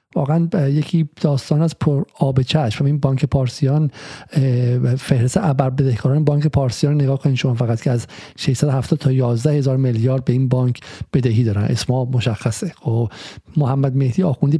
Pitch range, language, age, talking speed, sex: 130-160 Hz, Persian, 50-69, 150 wpm, male